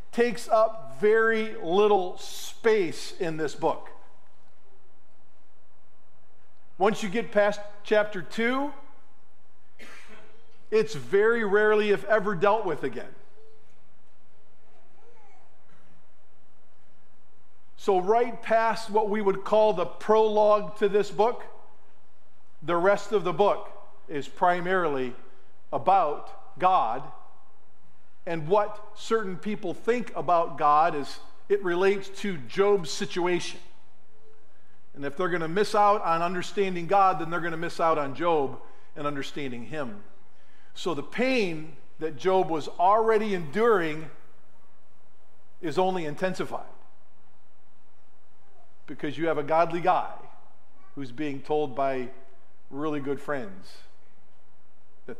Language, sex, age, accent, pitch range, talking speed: English, male, 50-69, American, 140-210 Hz, 110 wpm